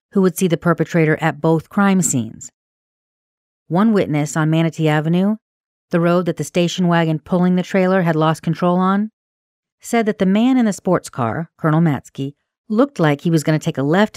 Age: 40-59